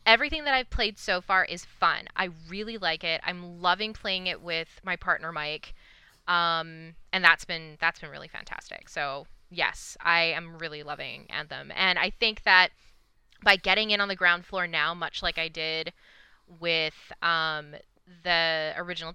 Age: 20-39